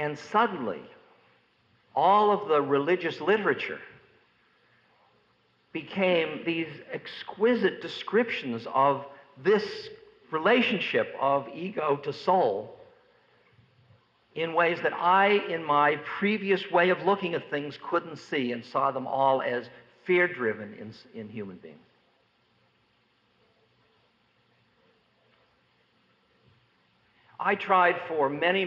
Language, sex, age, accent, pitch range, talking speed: English, male, 50-69, American, 130-195 Hz, 95 wpm